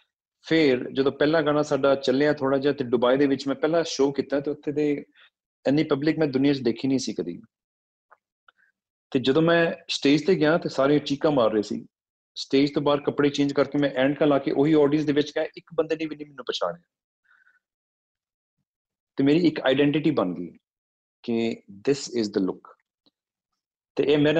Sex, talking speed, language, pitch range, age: male, 185 wpm, Punjabi, 120-145 Hz, 40-59